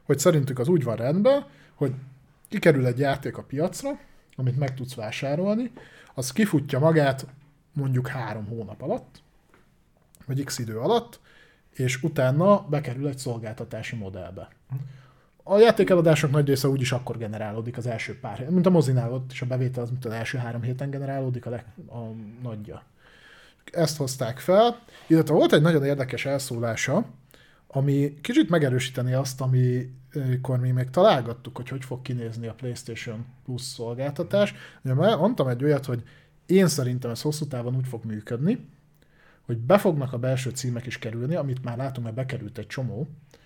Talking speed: 155 wpm